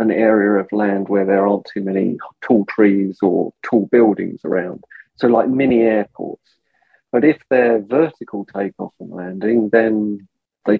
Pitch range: 100-115 Hz